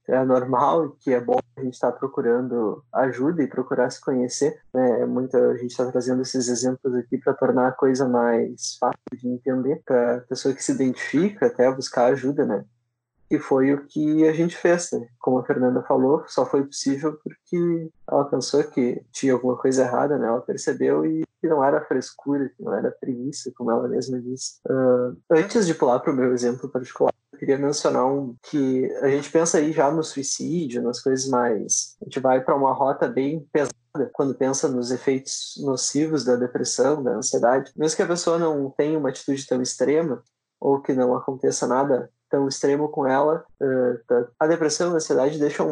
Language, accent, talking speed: Portuguese, Brazilian, 190 wpm